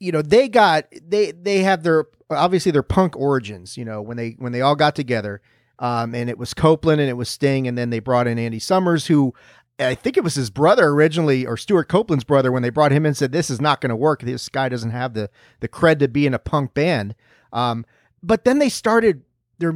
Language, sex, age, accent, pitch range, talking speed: English, male, 30-49, American, 125-170 Hz, 245 wpm